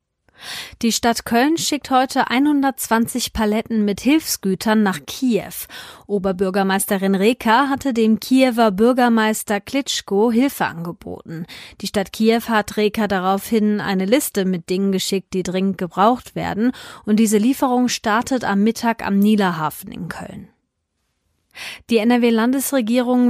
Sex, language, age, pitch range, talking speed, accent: female, German, 30-49, 195-235 Hz, 120 wpm, German